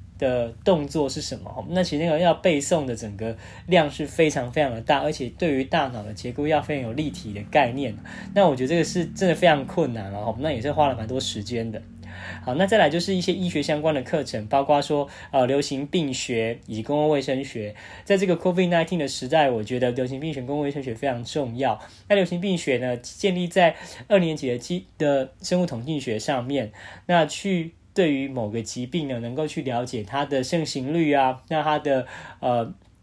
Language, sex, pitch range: Chinese, male, 115-160 Hz